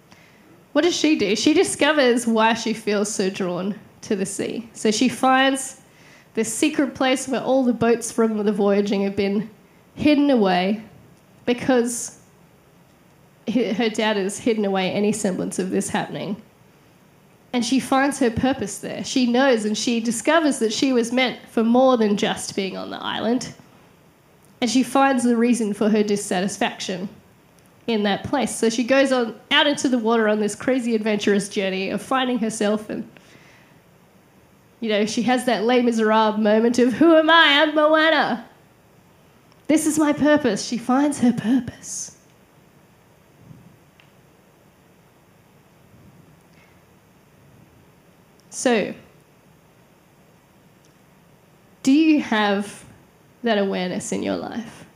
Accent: Australian